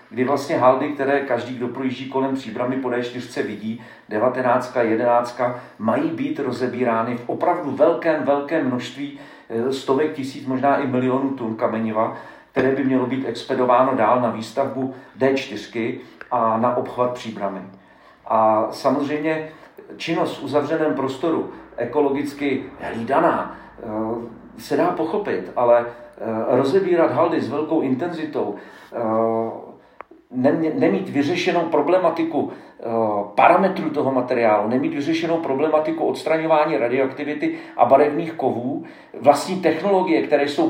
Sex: male